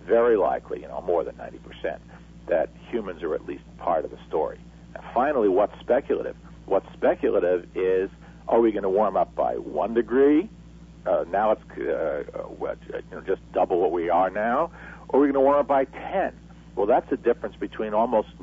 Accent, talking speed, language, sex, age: American, 195 wpm, English, male, 50-69